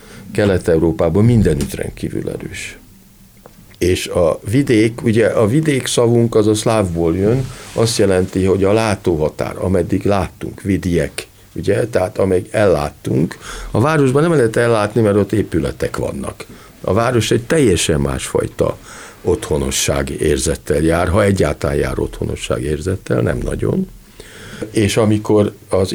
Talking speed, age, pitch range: 125 wpm, 50-69, 95-120 Hz